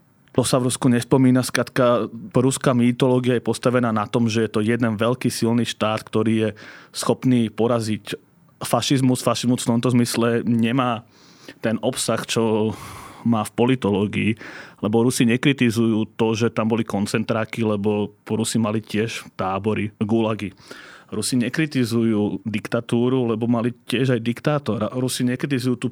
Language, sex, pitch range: Slovak, male, 110-130 Hz